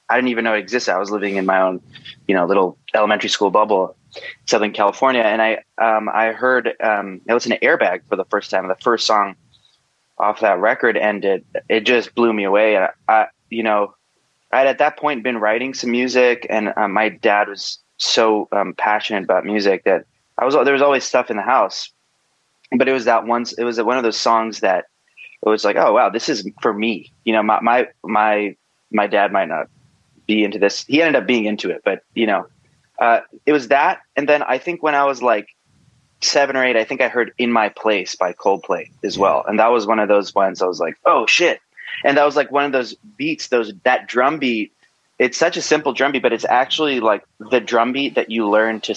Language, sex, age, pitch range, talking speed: English, male, 20-39, 105-125 Hz, 230 wpm